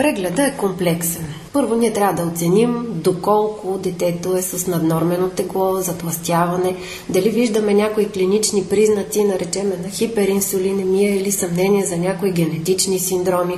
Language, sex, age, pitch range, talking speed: Bulgarian, female, 30-49, 175-215 Hz, 130 wpm